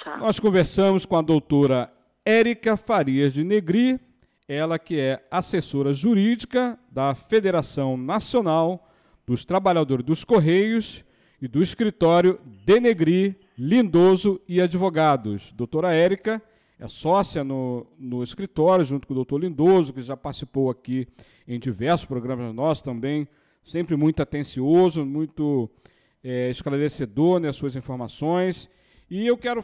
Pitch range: 145-195 Hz